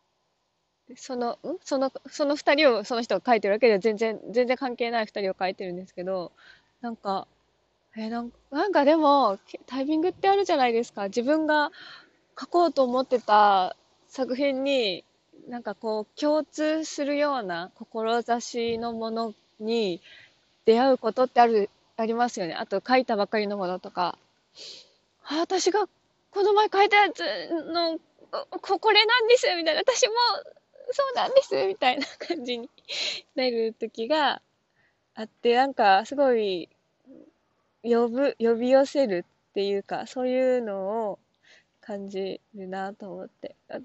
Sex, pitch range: female, 225-305 Hz